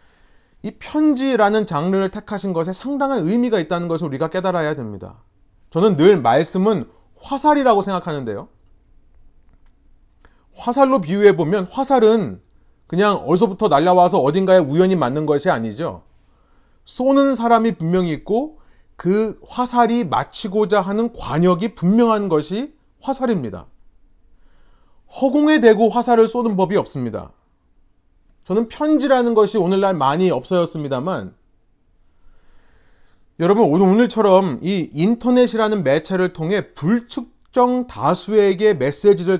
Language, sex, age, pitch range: Korean, male, 30-49, 145-220 Hz